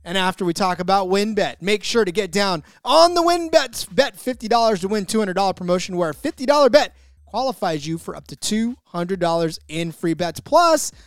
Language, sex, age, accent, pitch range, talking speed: English, male, 30-49, American, 165-235 Hz, 185 wpm